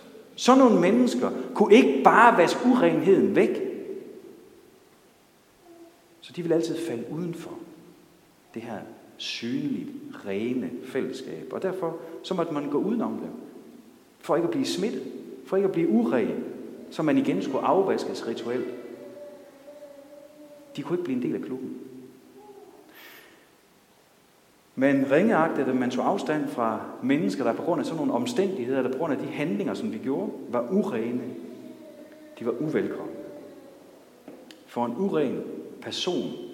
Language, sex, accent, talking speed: Danish, male, native, 140 wpm